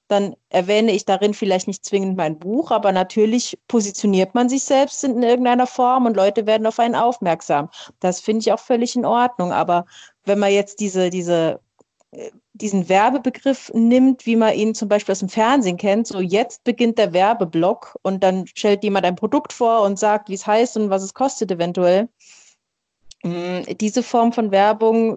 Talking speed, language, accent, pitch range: 175 wpm, German, German, 185-225 Hz